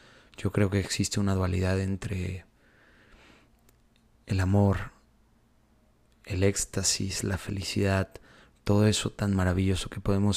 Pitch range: 95-105 Hz